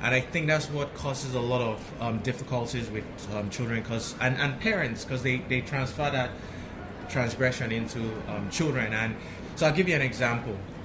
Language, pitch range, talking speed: English, 115-140 Hz, 185 wpm